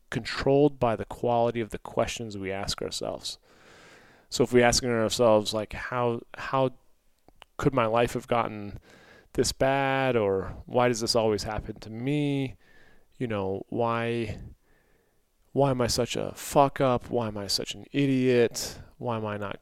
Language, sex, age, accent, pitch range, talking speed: English, male, 30-49, American, 105-125 Hz, 160 wpm